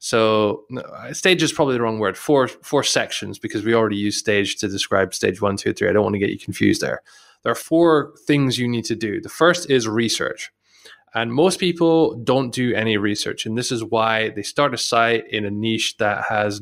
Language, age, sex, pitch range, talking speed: English, 20-39, male, 110-130 Hz, 220 wpm